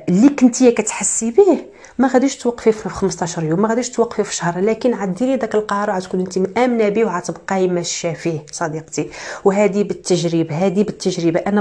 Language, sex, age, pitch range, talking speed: Arabic, female, 40-59, 180-220 Hz, 165 wpm